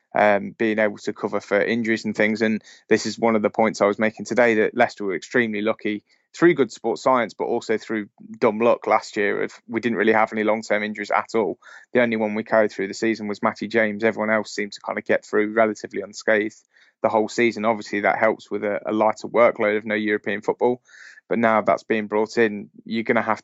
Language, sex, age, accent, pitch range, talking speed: English, male, 20-39, British, 105-110 Hz, 235 wpm